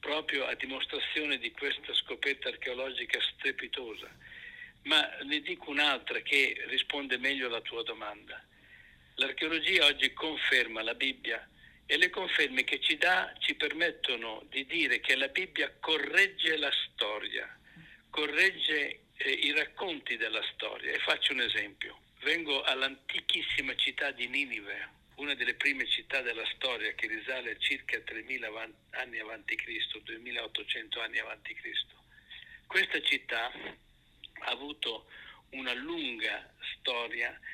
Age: 60-79